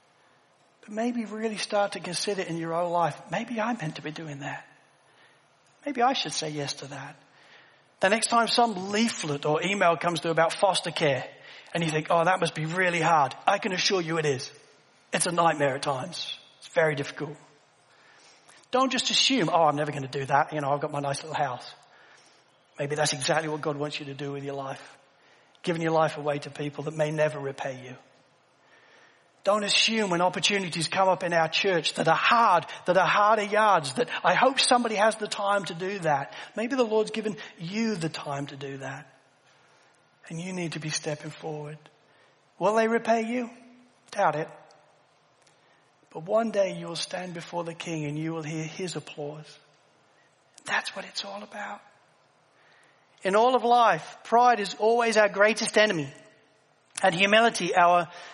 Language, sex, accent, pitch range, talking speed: English, male, British, 150-210 Hz, 185 wpm